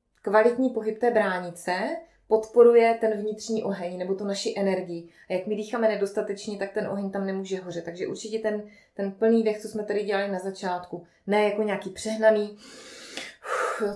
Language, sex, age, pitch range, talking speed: Czech, female, 20-39, 185-210 Hz, 175 wpm